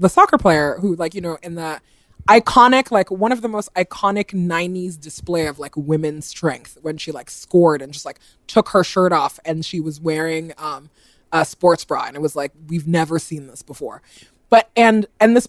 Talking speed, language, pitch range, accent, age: 210 wpm, English, 160-215 Hz, American, 20-39